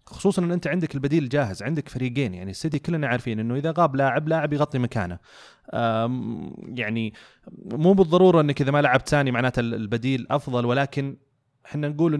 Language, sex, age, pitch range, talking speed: Arabic, male, 30-49, 120-160 Hz, 160 wpm